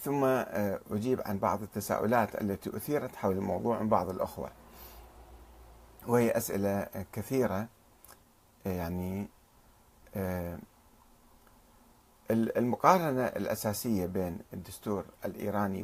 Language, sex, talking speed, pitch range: Arabic, male, 80 wpm, 100-135 Hz